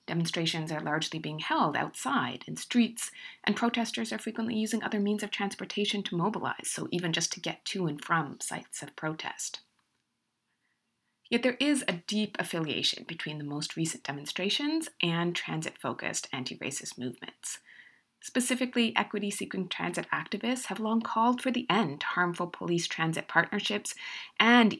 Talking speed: 145 wpm